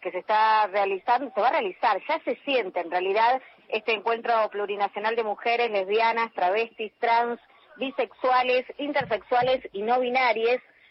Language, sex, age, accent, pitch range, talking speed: Spanish, female, 30-49, Argentinian, 195-255 Hz, 145 wpm